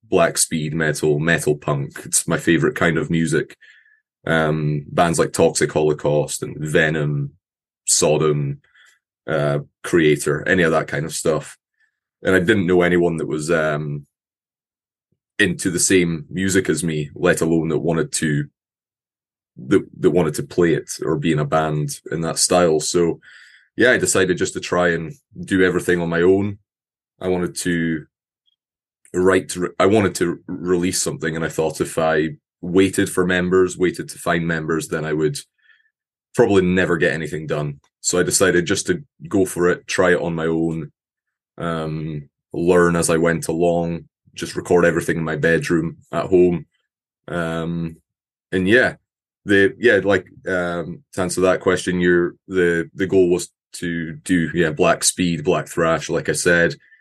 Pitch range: 80-90 Hz